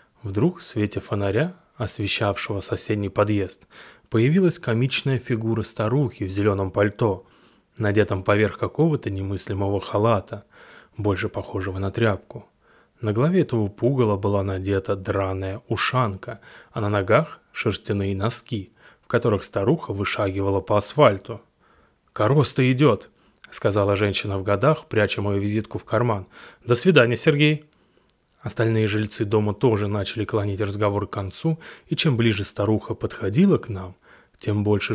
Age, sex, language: 20-39, male, Russian